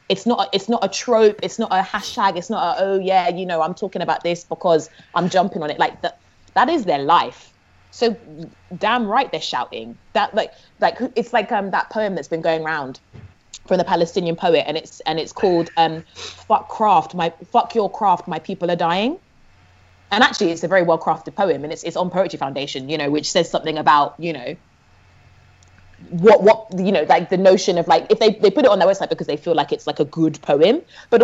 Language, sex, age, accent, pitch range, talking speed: English, female, 20-39, British, 160-220 Hz, 225 wpm